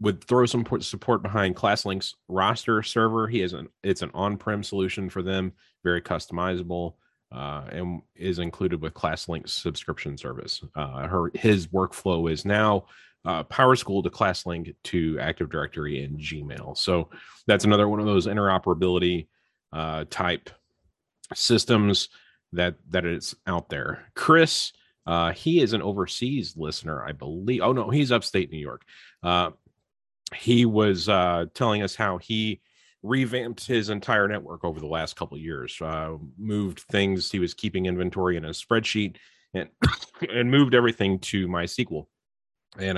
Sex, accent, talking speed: male, American, 150 wpm